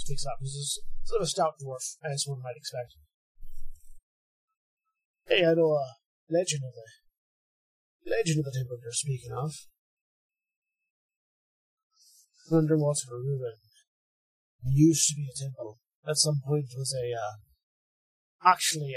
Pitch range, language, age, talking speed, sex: 120-175 Hz, English, 30-49, 140 wpm, male